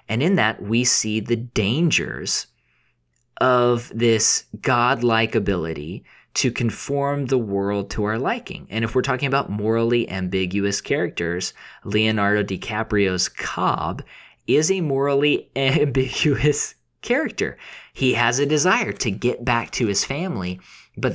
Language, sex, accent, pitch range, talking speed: English, male, American, 100-130 Hz, 130 wpm